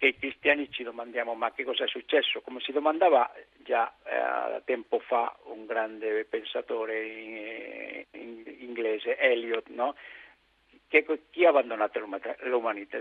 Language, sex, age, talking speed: Italian, male, 60-79, 140 wpm